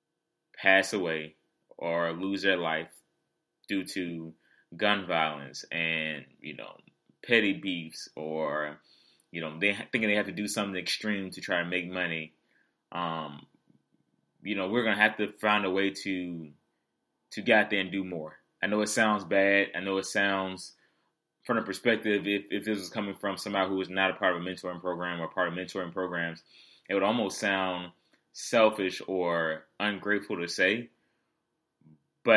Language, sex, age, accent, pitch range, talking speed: English, male, 20-39, American, 85-105 Hz, 170 wpm